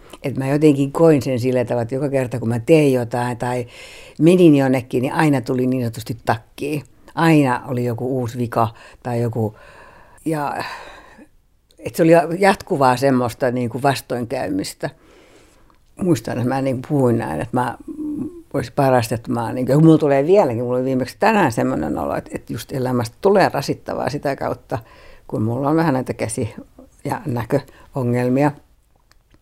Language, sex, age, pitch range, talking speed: Finnish, female, 60-79, 125-210 Hz, 145 wpm